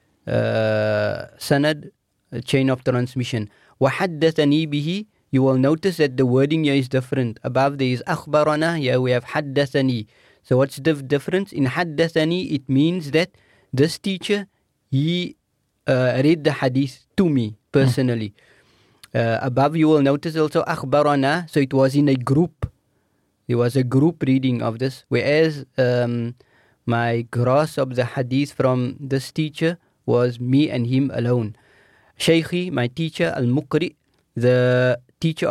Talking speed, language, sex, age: 135 wpm, English, male, 30-49